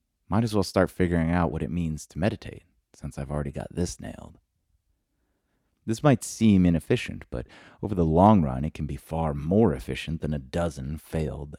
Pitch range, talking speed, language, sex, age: 75-95 Hz, 185 wpm, English, male, 30-49